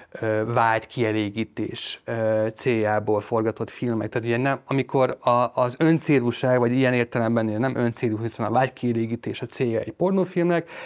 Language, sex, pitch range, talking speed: Hungarian, male, 110-130 Hz, 125 wpm